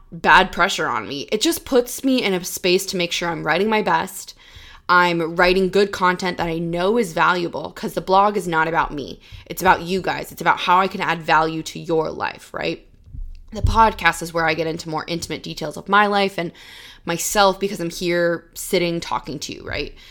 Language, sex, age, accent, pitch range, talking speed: English, female, 20-39, American, 165-210 Hz, 215 wpm